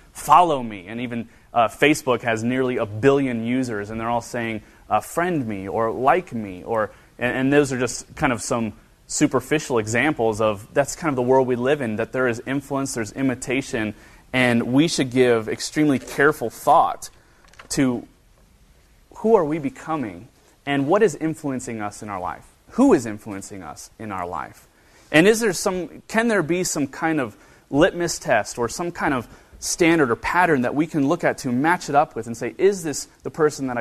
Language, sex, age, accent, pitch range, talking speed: English, male, 30-49, American, 110-140 Hz, 195 wpm